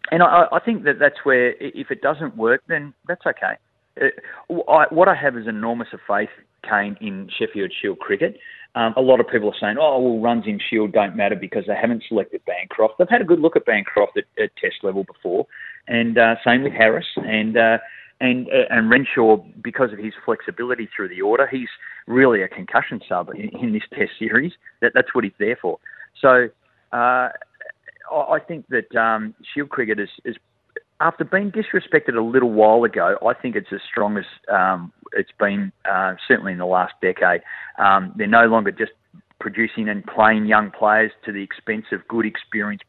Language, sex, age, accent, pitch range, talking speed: English, male, 30-49, Australian, 110-170 Hz, 195 wpm